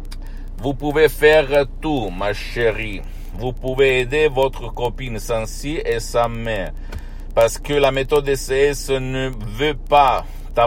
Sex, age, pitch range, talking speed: male, 60-79, 100-125 Hz, 140 wpm